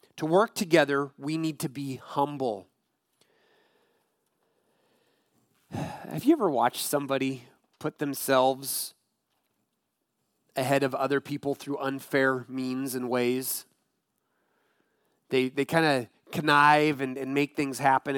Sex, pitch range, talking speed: male, 135-165 Hz, 110 wpm